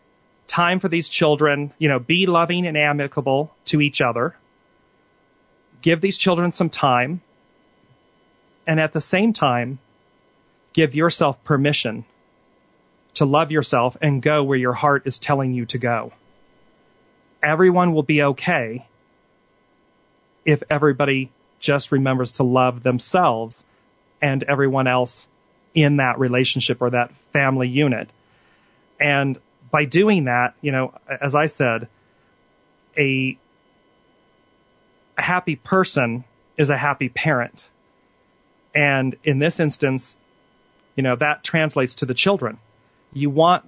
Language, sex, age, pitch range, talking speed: English, male, 40-59, 125-160 Hz, 120 wpm